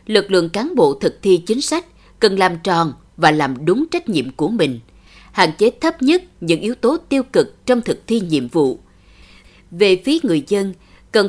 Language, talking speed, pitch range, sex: Vietnamese, 195 wpm, 160-270 Hz, female